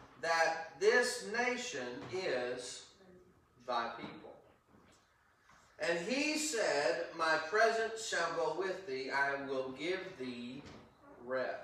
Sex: male